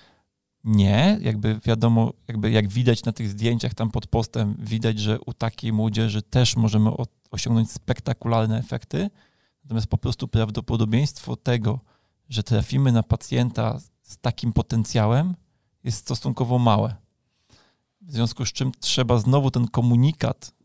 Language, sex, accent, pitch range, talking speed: Polish, male, native, 110-125 Hz, 130 wpm